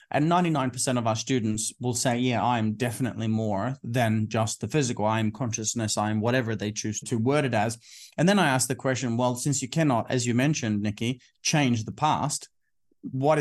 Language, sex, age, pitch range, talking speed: English, male, 30-49, 115-145 Hz, 190 wpm